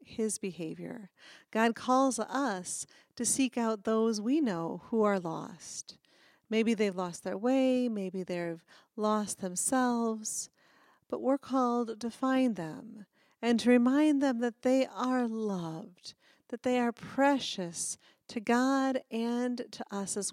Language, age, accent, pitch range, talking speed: English, 40-59, American, 190-250 Hz, 140 wpm